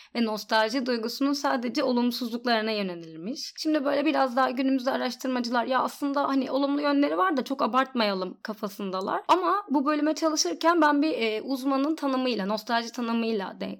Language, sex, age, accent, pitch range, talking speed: Turkish, female, 30-49, native, 220-290 Hz, 140 wpm